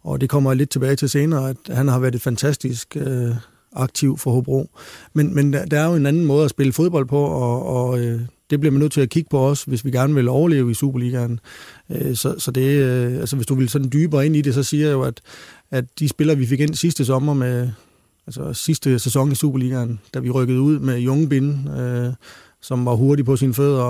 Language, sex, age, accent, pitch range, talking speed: Danish, male, 30-49, native, 125-140 Hz, 240 wpm